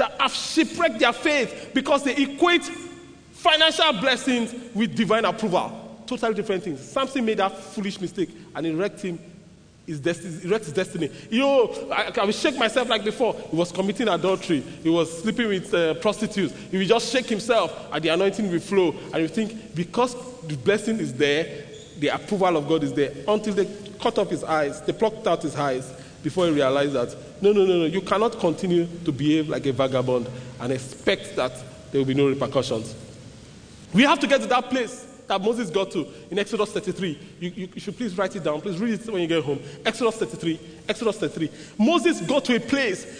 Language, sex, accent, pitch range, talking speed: English, male, Nigerian, 175-255 Hz, 195 wpm